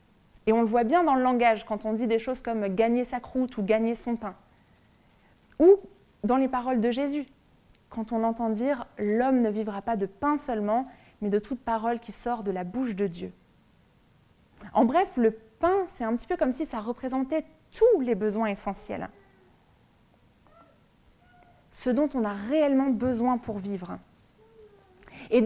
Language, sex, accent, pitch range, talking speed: French, female, French, 220-275 Hz, 190 wpm